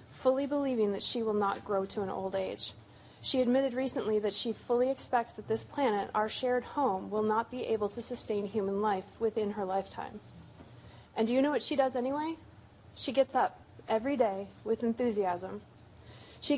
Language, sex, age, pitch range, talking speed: English, female, 30-49, 200-255 Hz, 185 wpm